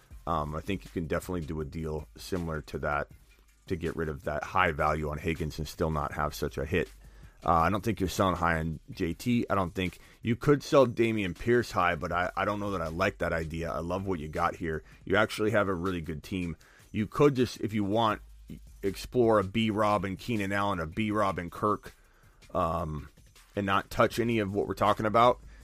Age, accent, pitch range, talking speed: 30-49, American, 85-105 Hz, 220 wpm